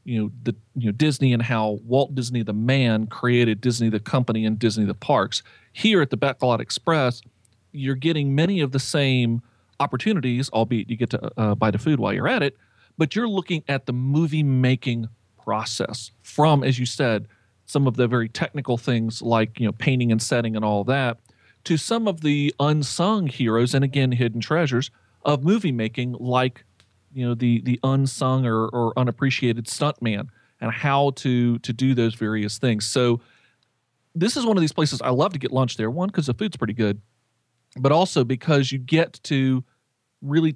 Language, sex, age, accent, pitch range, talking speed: English, male, 40-59, American, 115-145 Hz, 190 wpm